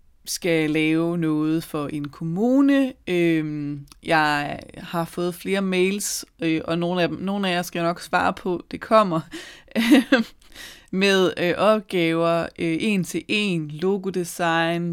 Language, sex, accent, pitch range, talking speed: Danish, female, native, 160-195 Hz, 135 wpm